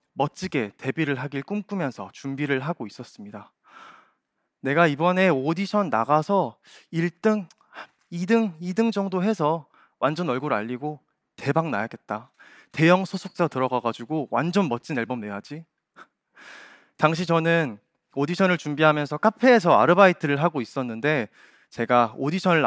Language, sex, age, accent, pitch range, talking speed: English, male, 20-39, Korean, 130-190 Hz, 100 wpm